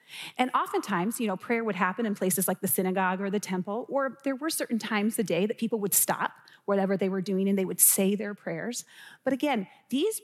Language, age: English, 30-49